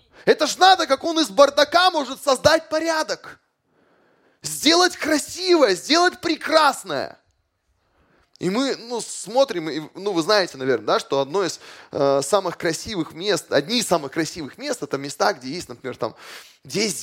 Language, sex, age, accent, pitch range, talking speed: Russian, male, 20-39, native, 165-265 Hz, 150 wpm